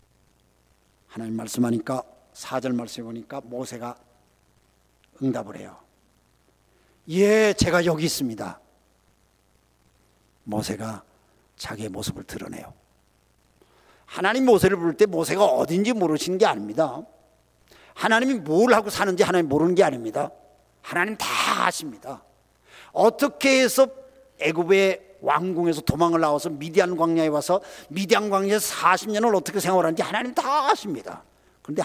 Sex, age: male, 50-69